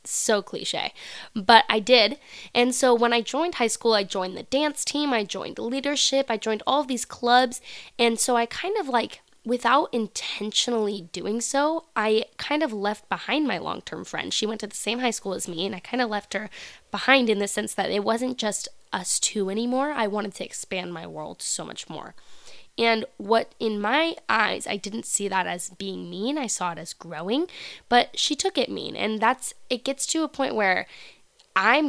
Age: 10-29